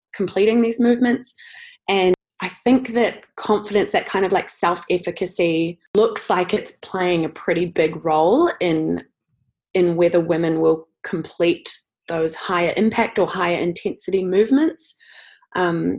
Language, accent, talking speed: English, Australian, 130 wpm